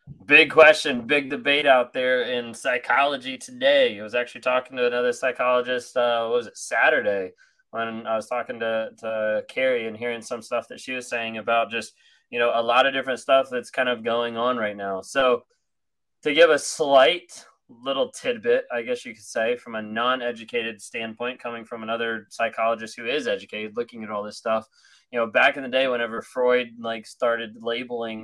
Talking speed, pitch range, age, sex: 195 wpm, 110-130 Hz, 20-39, male